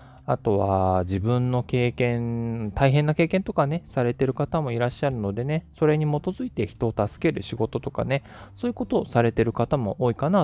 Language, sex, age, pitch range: Japanese, male, 20-39, 100-160 Hz